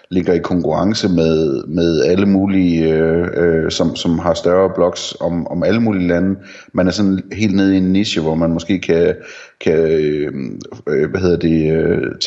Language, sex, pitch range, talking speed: Danish, male, 85-100 Hz, 170 wpm